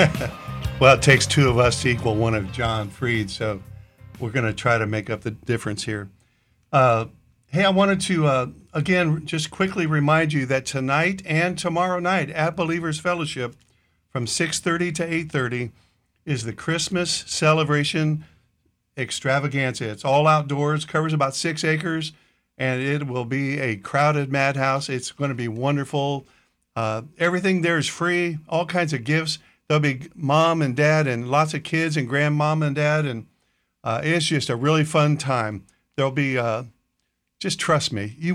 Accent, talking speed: American, 165 wpm